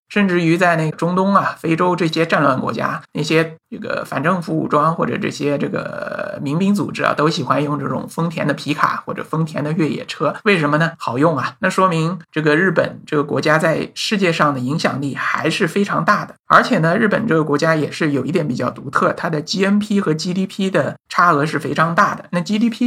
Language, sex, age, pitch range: Chinese, male, 50-69, 150-190 Hz